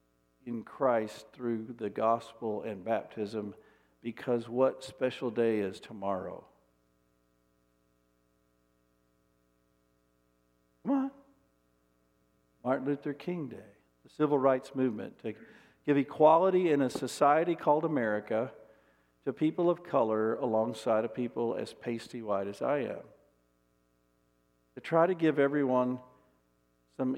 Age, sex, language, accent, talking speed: 50-69, male, English, American, 110 wpm